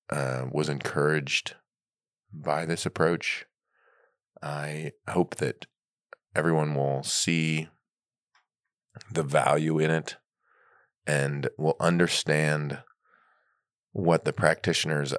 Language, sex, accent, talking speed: English, male, American, 85 wpm